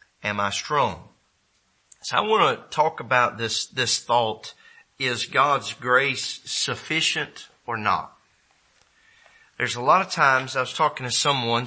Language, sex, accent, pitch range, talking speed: English, male, American, 105-130 Hz, 145 wpm